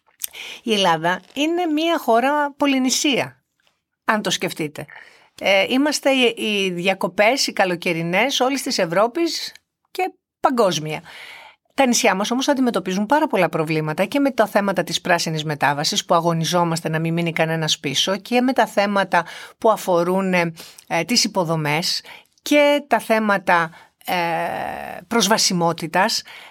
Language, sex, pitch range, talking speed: Greek, female, 170-245 Hz, 130 wpm